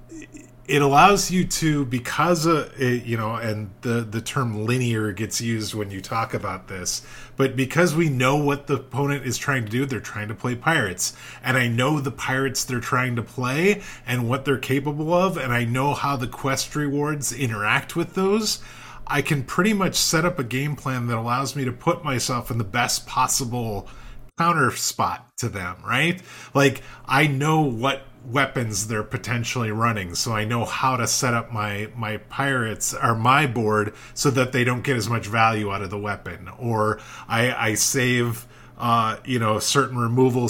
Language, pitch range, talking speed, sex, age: English, 115-140 Hz, 190 wpm, male, 30-49